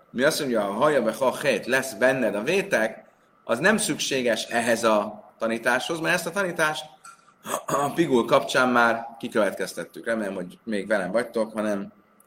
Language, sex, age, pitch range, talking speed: Hungarian, male, 30-49, 130-175 Hz, 165 wpm